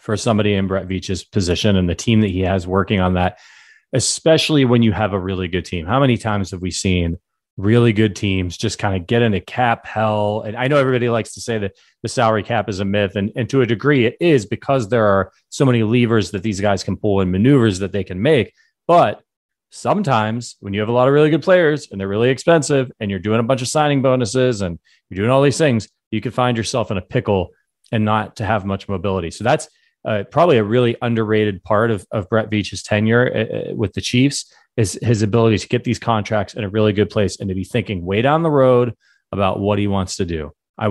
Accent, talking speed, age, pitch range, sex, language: American, 240 wpm, 30-49, 100-125 Hz, male, English